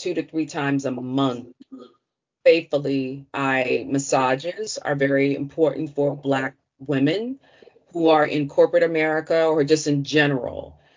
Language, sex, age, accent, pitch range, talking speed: English, female, 30-49, American, 145-170 Hz, 130 wpm